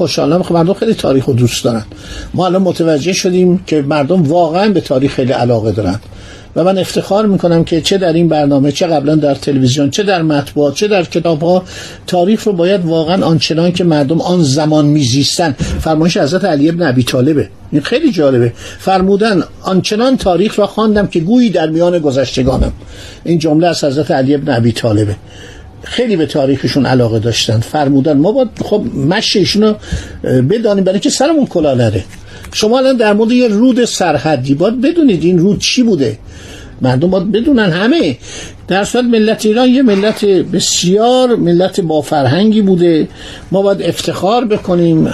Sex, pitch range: male, 140-200 Hz